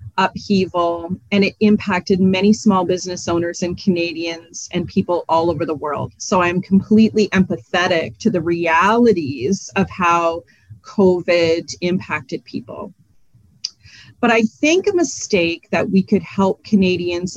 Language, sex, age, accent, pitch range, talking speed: English, female, 30-49, American, 170-205 Hz, 130 wpm